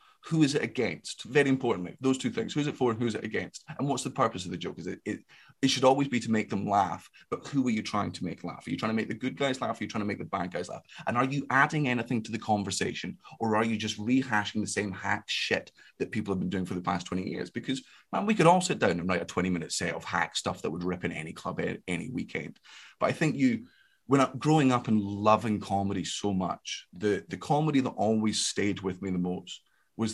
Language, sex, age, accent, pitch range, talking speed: English, male, 30-49, British, 105-140 Hz, 275 wpm